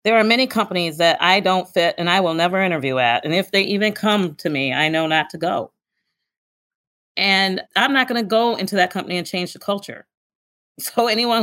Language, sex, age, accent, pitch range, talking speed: English, female, 40-59, American, 160-205 Hz, 215 wpm